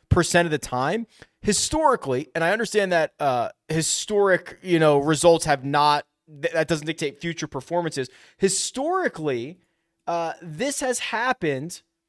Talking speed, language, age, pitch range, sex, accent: 135 wpm, English, 30-49, 145-200 Hz, male, American